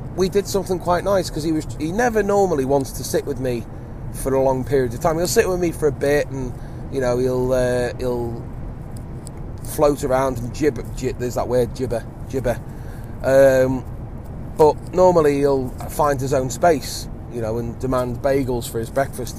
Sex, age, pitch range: male, 30-49, 120-145 Hz